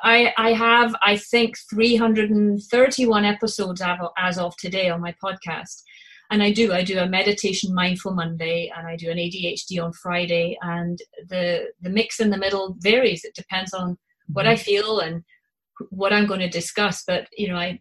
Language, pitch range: English, 180-210 Hz